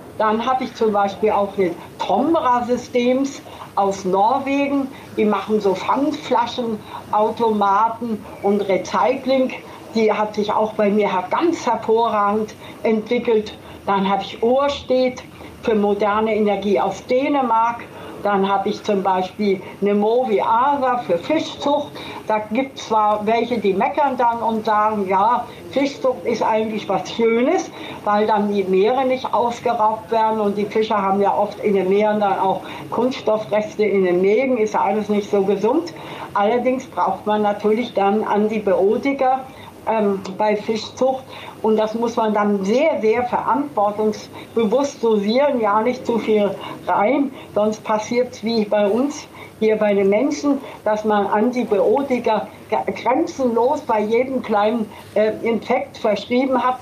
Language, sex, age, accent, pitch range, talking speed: German, female, 60-79, German, 205-250 Hz, 140 wpm